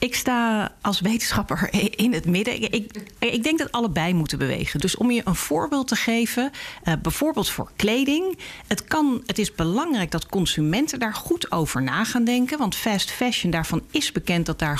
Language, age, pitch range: Dutch, 40-59, 170-235 Hz